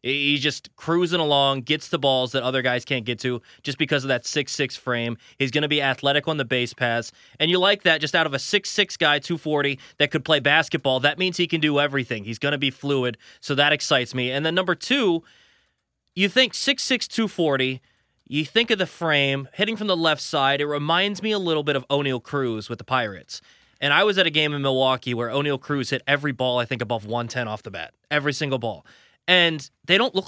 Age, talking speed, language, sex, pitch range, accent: 20-39, 230 wpm, English, male, 130-160 Hz, American